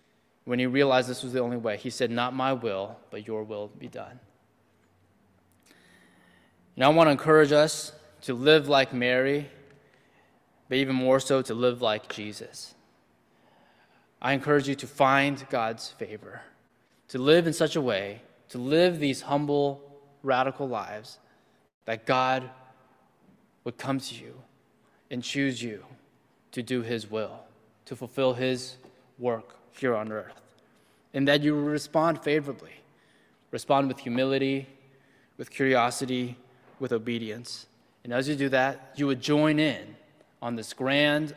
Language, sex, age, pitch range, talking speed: English, male, 20-39, 120-140 Hz, 145 wpm